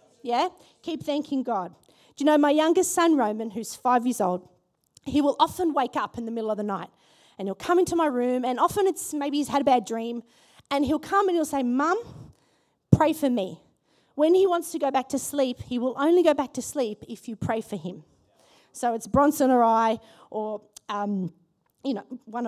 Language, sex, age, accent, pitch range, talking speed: English, female, 30-49, Australian, 245-335 Hz, 215 wpm